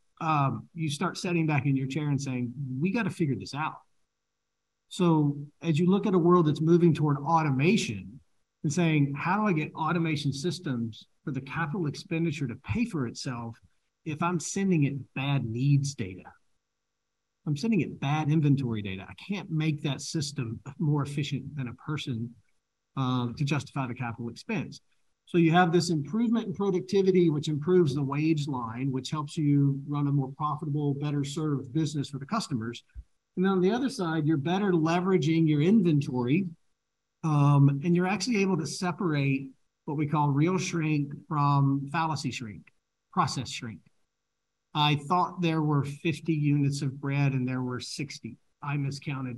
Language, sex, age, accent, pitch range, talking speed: English, male, 40-59, American, 130-165 Hz, 170 wpm